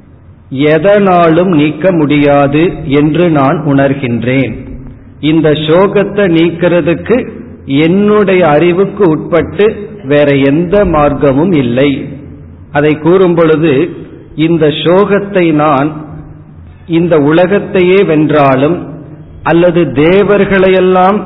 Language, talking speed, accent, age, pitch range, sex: Tamil, 75 wpm, native, 50-69, 140-175 Hz, male